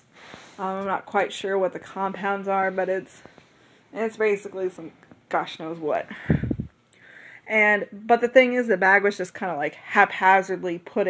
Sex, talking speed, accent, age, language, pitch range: female, 160 wpm, American, 20-39, English, 170-210 Hz